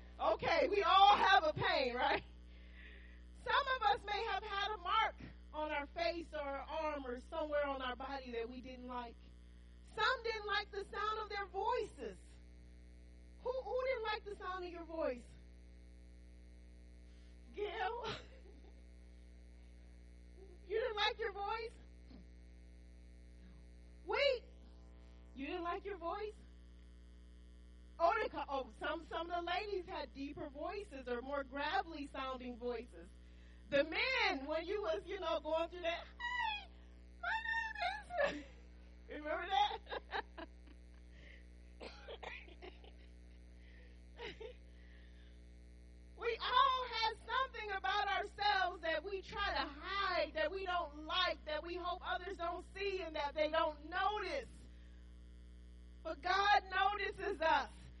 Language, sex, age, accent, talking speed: English, female, 30-49, American, 120 wpm